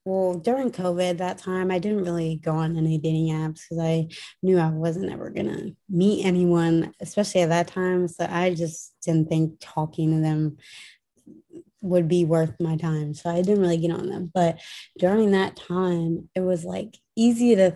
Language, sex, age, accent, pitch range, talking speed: English, female, 20-39, American, 165-190 Hz, 190 wpm